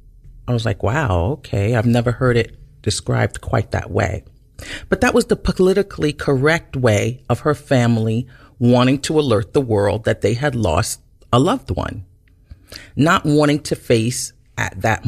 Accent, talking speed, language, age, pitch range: American, 165 wpm, English, 40-59, 105-140 Hz